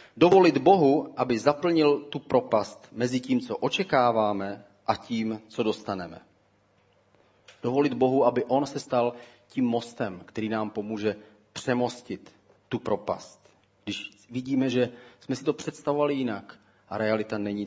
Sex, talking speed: male, 130 wpm